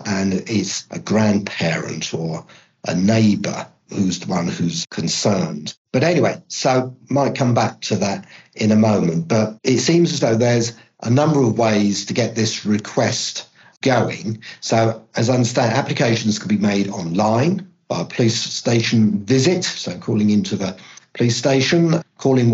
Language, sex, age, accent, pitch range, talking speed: English, male, 50-69, British, 100-125 Hz, 155 wpm